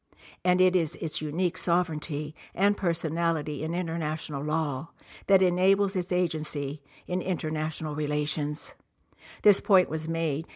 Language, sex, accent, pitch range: English, female, American, 150-180 Hz